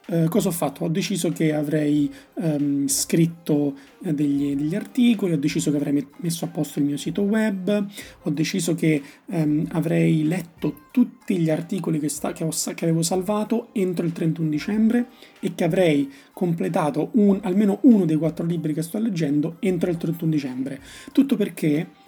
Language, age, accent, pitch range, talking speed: Italian, 30-49, native, 150-195 Hz, 150 wpm